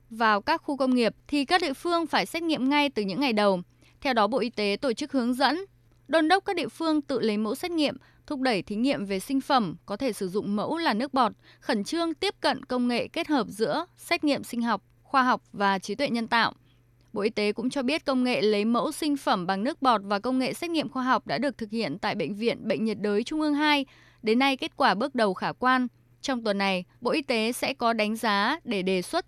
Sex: female